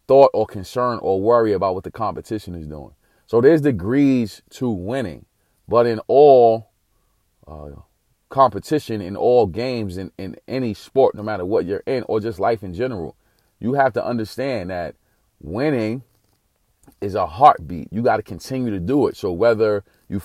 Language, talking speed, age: English, 170 wpm, 30-49